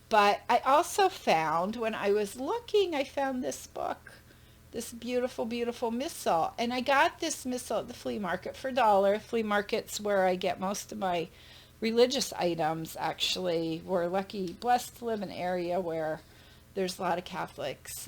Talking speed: 175 wpm